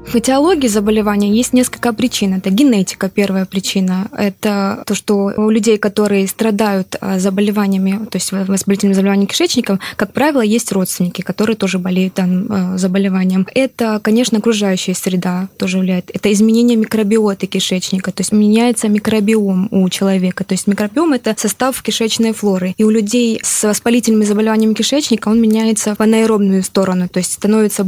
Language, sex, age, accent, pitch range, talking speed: Russian, female, 20-39, native, 195-225 Hz, 150 wpm